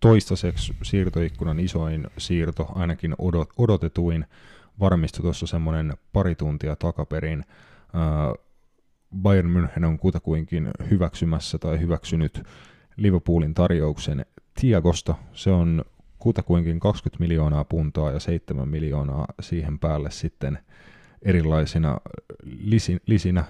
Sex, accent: male, native